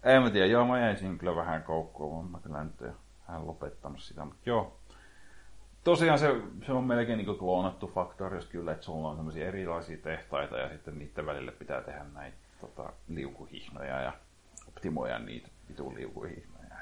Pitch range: 80-110 Hz